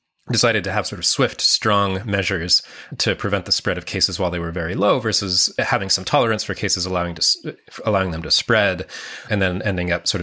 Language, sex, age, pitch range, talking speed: English, male, 30-49, 85-110 Hz, 210 wpm